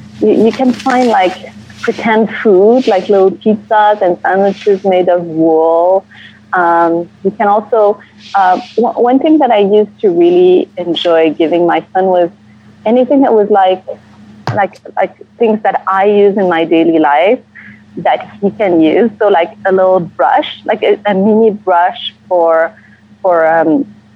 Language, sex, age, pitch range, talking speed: English, female, 30-49, 165-220 Hz, 155 wpm